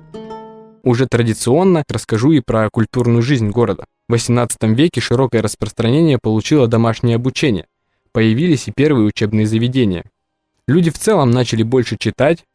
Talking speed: 130 wpm